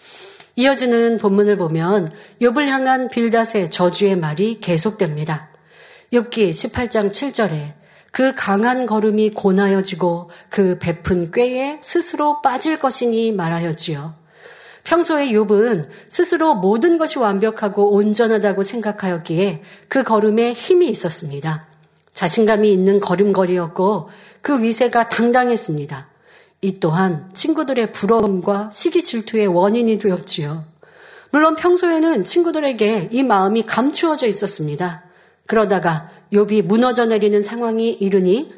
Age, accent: 40-59, native